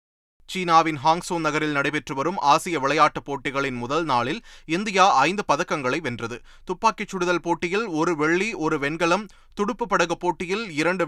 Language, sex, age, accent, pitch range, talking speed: Tamil, male, 30-49, native, 145-190 Hz, 135 wpm